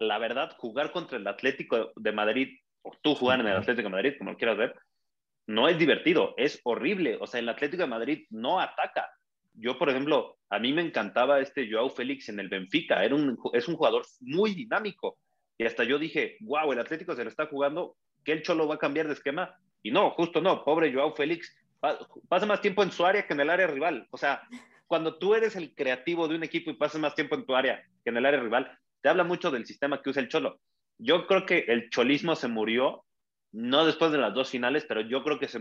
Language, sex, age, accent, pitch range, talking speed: Spanish, male, 30-49, Mexican, 130-175 Hz, 235 wpm